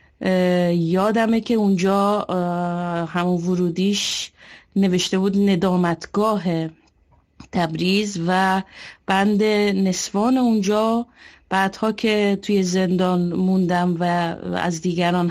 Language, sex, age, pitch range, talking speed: Persian, female, 30-49, 180-200 Hz, 80 wpm